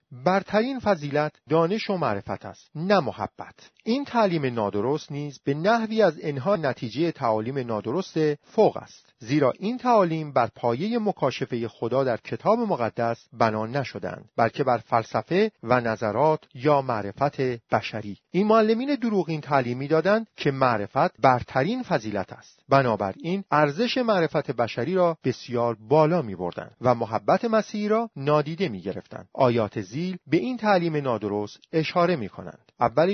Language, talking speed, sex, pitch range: Persian, 135 wpm, male, 115-180 Hz